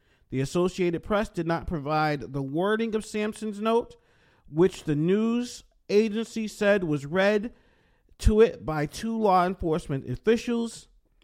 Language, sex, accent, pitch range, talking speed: English, male, American, 145-210 Hz, 135 wpm